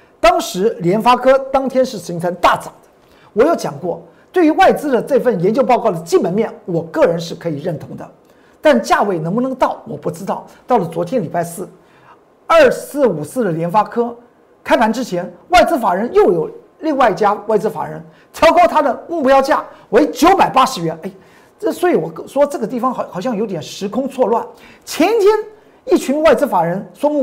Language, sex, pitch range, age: Chinese, male, 205-300 Hz, 50-69